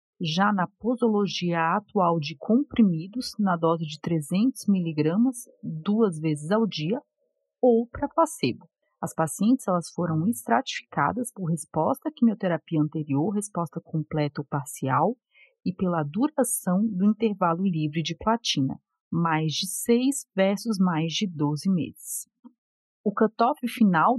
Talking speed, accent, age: 125 wpm, Brazilian, 40-59